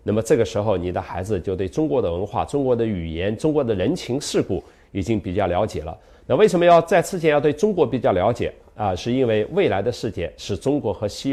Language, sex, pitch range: Chinese, male, 95-140 Hz